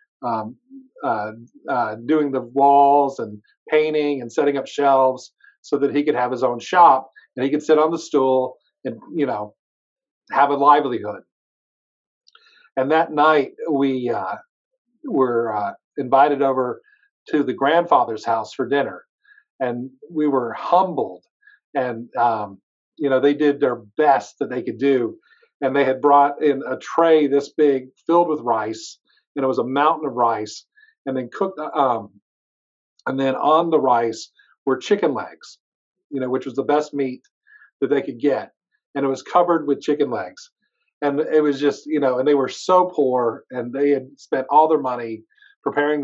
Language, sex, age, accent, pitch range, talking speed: English, male, 50-69, American, 130-160 Hz, 170 wpm